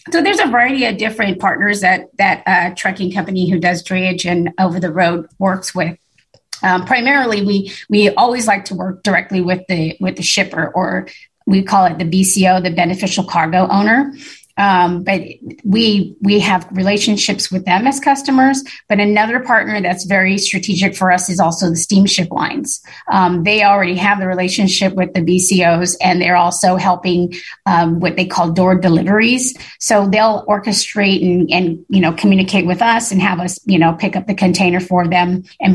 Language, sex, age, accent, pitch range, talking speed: English, female, 30-49, American, 180-205 Hz, 185 wpm